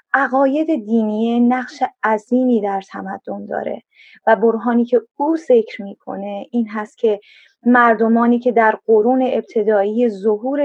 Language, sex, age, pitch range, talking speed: Persian, female, 20-39, 220-275 Hz, 125 wpm